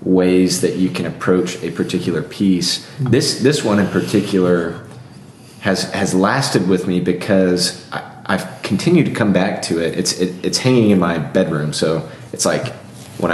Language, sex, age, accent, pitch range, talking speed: English, male, 20-39, American, 90-110 Hz, 160 wpm